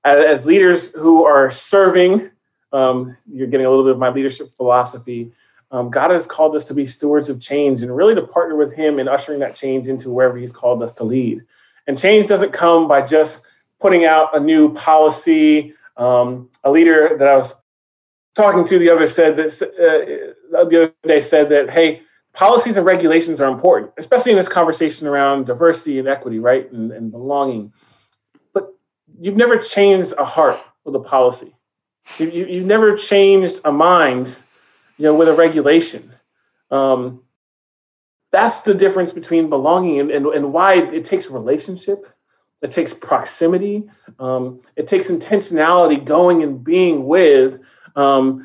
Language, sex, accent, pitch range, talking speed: English, male, American, 130-180 Hz, 165 wpm